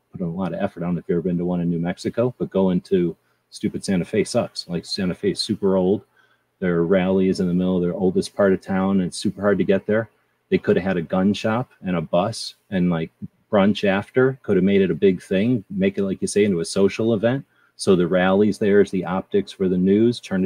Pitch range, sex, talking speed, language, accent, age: 90-130 Hz, male, 260 wpm, English, American, 30-49